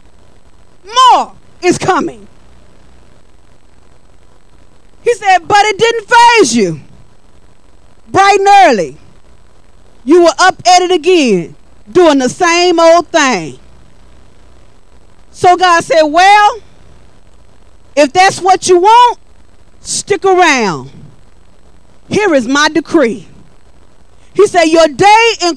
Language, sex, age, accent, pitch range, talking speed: English, female, 40-59, American, 330-425 Hz, 105 wpm